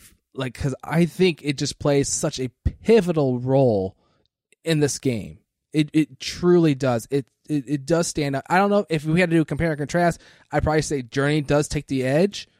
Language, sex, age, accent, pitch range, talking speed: English, male, 20-39, American, 130-165 Hz, 215 wpm